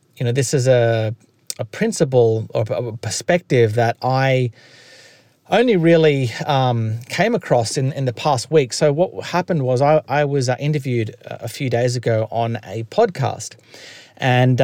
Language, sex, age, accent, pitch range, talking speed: English, male, 30-49, Australian, 115-145 Hz, 155 wpm